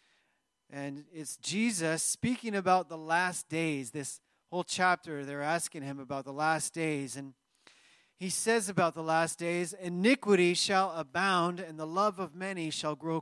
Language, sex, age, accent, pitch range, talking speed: English, male, 30-49, American, 150-185 Hz, 160 wpm